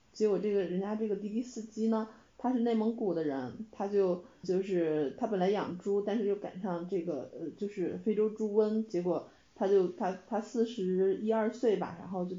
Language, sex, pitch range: Chinese, female, 185-225 Hz